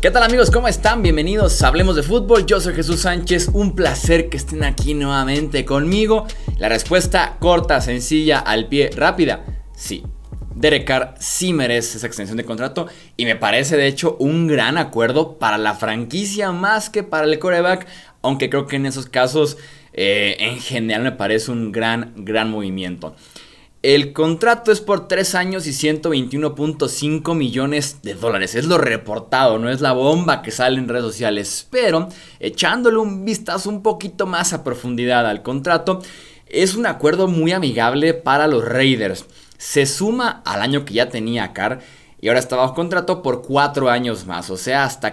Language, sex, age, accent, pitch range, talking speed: Spanish, male, 20-39, Mexican, 120-170 Hz, 170 wpm